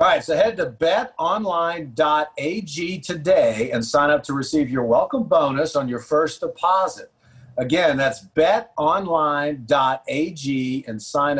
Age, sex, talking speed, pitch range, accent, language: 50-69, male, 125 wpm, 125-165 Hz, American, English